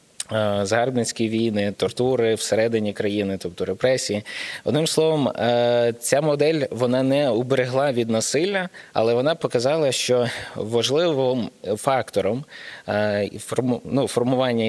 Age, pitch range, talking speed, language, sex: 20-39, 105-130 Hz, 95 wpm, Ukrainian, male